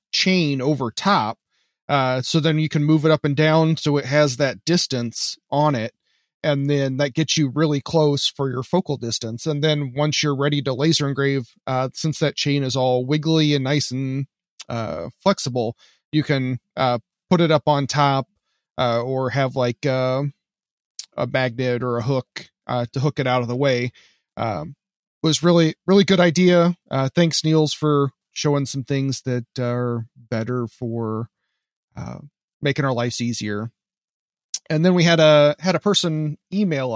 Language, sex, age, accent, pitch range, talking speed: English, male, 30-49, American, 125-160 Hz, 175 wpm